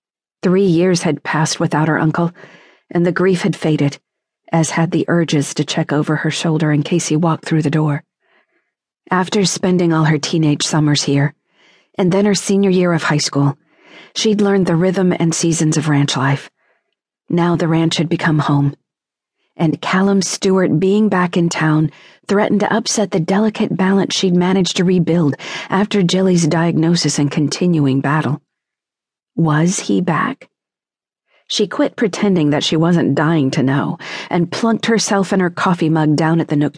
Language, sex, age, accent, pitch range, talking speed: English, female, 40-59, American, 155-190 Hz, 170 wpm